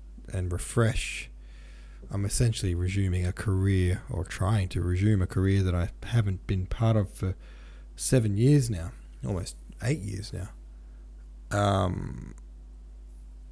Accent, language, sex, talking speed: Australian, English, male, 125 wpm